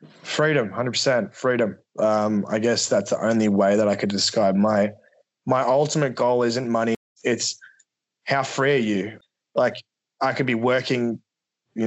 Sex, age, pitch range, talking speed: male, 20-39, 115-135 Hz, 160 wpm